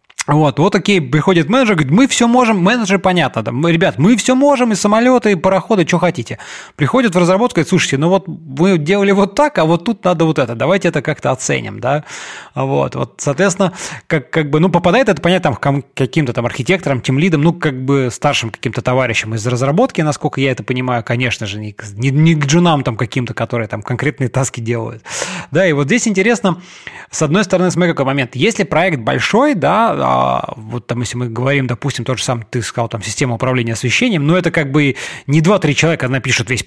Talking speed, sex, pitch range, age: 210 wpm, male, 125-180 Hz, 20-39